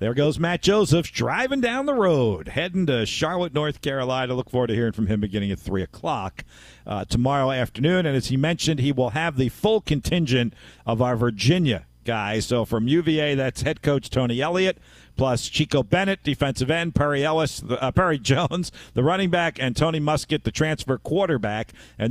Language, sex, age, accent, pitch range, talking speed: English, male, 50-69, American, 115-155 Hz, 185 wpm